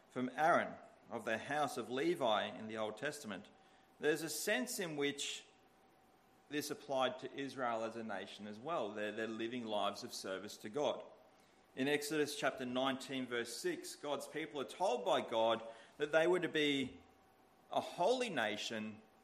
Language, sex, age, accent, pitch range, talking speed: English, male, 40-59, Australian, 120-155 Hz, 165 wpm